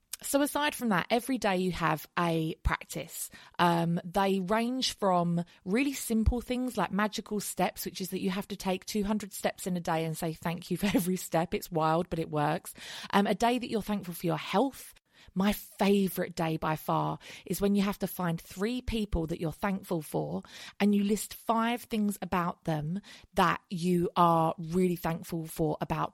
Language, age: English, 20-39